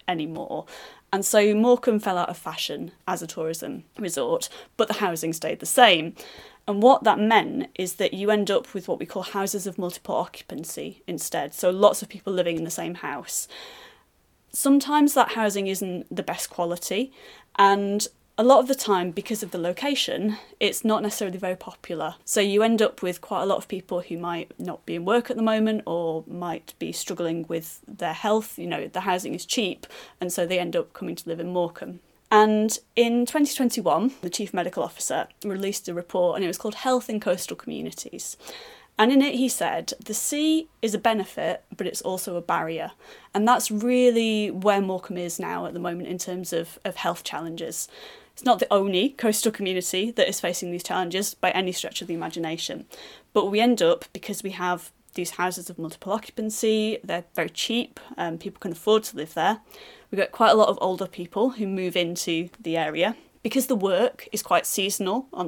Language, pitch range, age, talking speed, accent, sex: English, 180-225 Hz, 30-49, 200 wpm, British, female